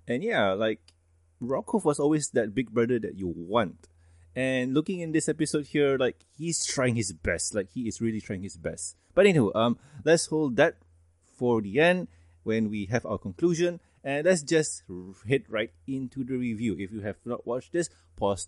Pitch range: 90-145 Hz